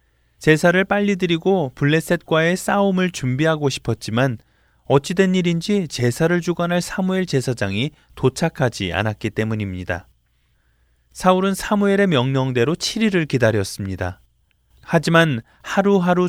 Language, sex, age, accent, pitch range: Korean, male, 20-39, native, 110-170 Hz